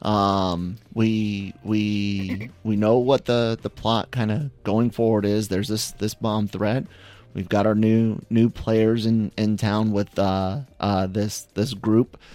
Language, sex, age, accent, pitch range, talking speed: English, male, 30-49, American, 100-115 Hz, 165 wpm